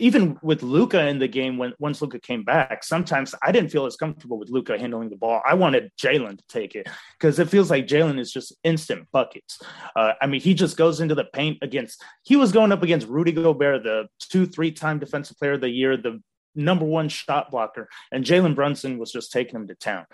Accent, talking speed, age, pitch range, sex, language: American, 225 wpm, 30-49, 130-160 Hz, male, English